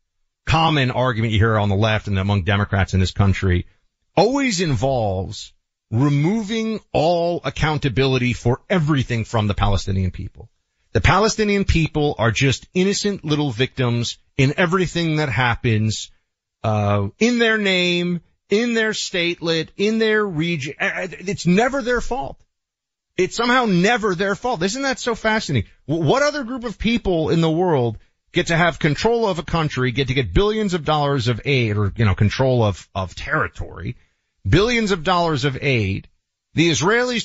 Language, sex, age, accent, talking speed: English, male, 30-49, American, 155 wpm